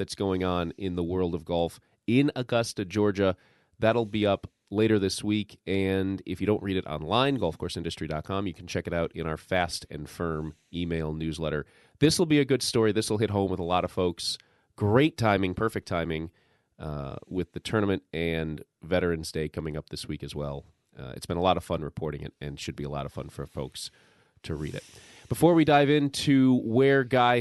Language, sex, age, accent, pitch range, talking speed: English, male, 30-49, American, 90-120 Hz, 210 wpm